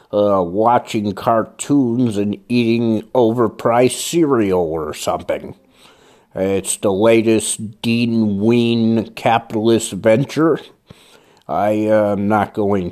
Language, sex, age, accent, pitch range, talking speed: English, male, 50-69, American, 100-125 Hz, 100 wpm